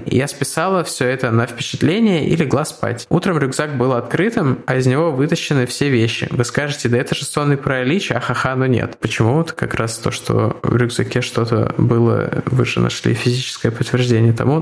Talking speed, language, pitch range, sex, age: 190 wpm, Russian, 125-155 Hz, male, 20-39